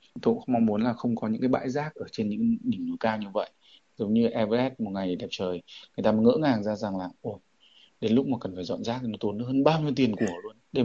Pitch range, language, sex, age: 105-135 Hz, Vietnamese, male, 20-39